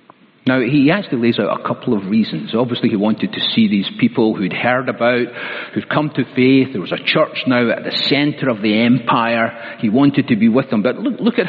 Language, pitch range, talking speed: English, 120-155 Hz, 230 wpm